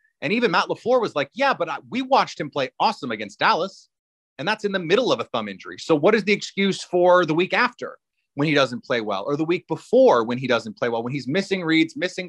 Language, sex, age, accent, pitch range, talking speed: English, male, 30-49, American, 130-180 Hz, 260 wpm